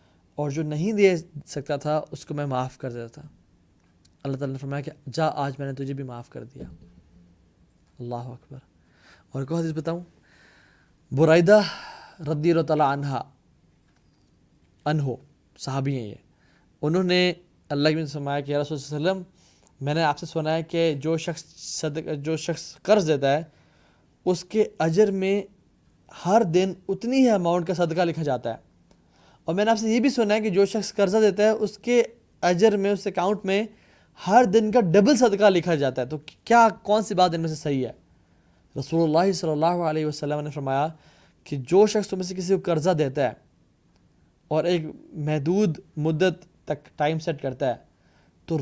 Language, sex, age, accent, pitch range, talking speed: English, male, 20-39, Indian, 145-200 Hz, 140 wpm